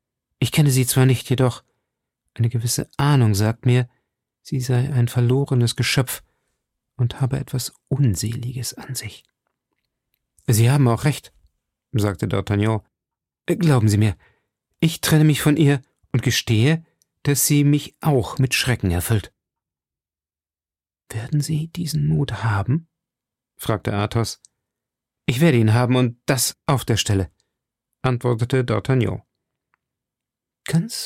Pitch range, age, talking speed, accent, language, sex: 105-130 Hz, 40-59, 125 wpm, German, German, male